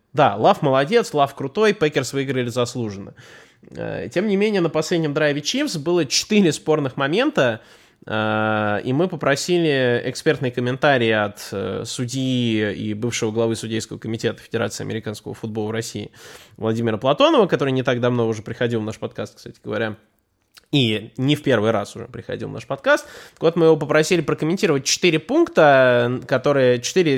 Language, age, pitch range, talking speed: Russian, 20-39, 115-150 Hz, 145 wpm